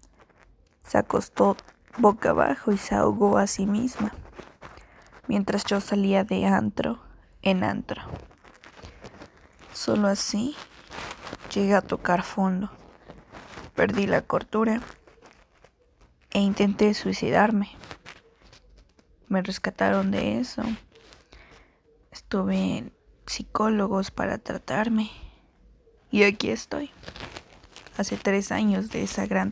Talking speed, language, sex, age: 95 wpm, Spanish, female, 20-39